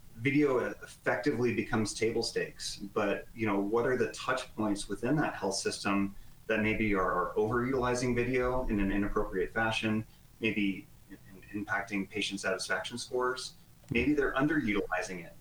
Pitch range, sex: 100-115 Hz, male